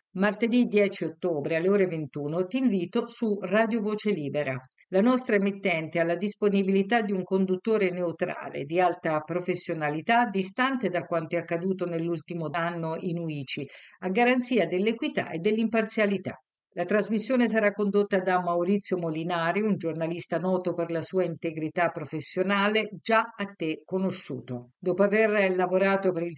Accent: native